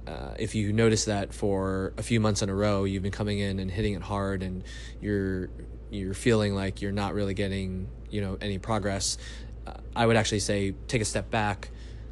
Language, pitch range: English, 95-110 Hz